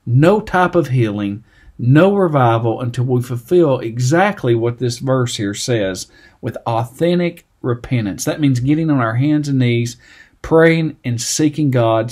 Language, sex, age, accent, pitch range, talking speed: English, male, 50-69, American, 115-150 Hz, 150 wpm